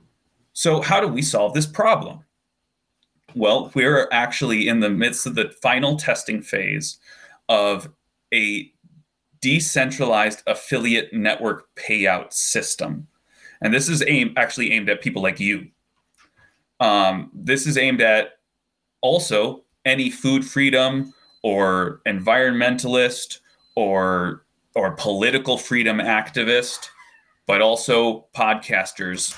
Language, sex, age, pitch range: English, male, 30-49, 105-140 Hz